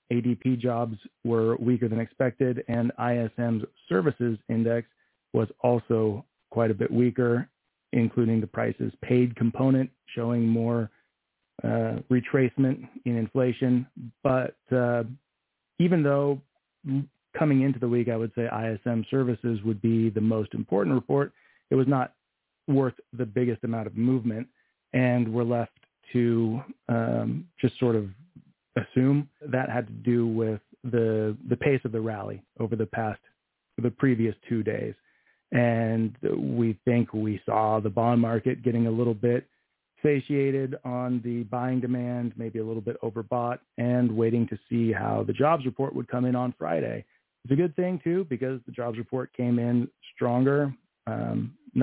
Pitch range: 115-130 Hz